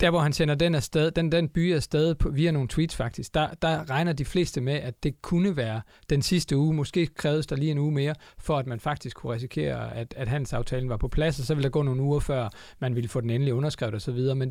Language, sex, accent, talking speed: Danish, male, native, 265 wpm